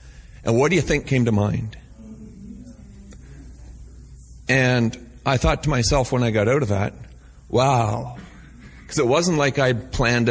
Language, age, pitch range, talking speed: English, 40-59, 100-130 Hz, 150 wpm